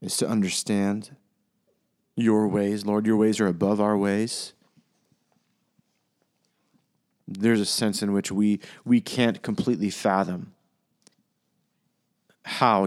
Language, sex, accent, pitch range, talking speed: English, male, American, 95-110 Hz, 105 wpm